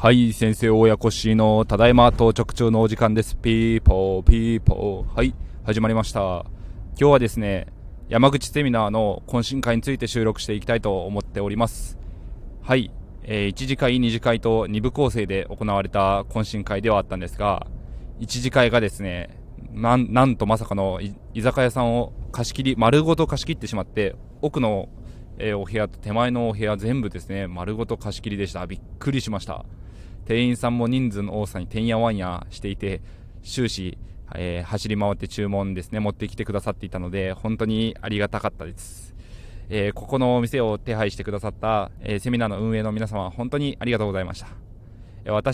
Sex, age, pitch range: male, 20-39, 100-120 Hz